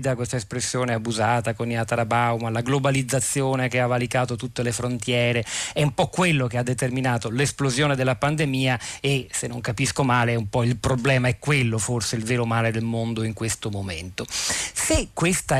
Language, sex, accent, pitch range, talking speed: Italian, male, native, 115-140 Hz, 180 wpm